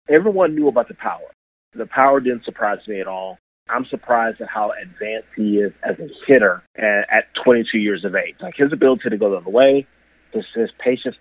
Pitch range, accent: 105-130 Hz, American